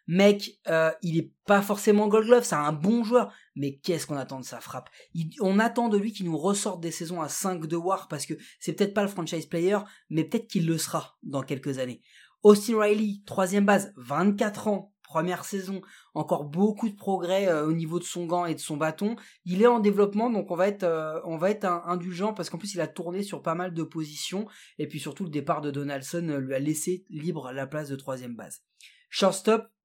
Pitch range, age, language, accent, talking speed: 160-210 Hz, 20-39, French, French, 220 wpm